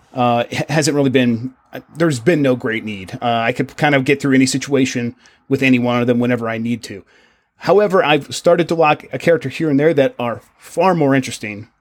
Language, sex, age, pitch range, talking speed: English, male, 30-49, 120-145 Hz, 215 wpm